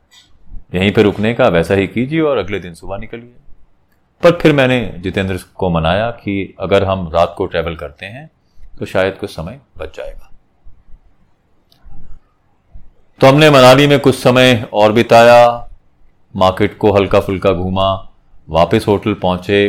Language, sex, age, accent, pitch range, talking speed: Hindi, male, 30-49, native, 90-120 Hz, 145 wpm